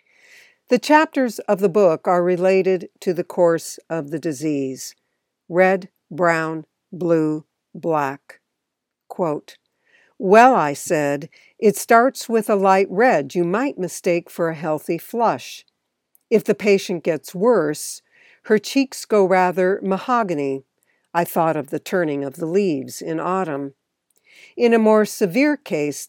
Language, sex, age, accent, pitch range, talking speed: English, female, 60-79, American, 160-205 Hz, 135 wpm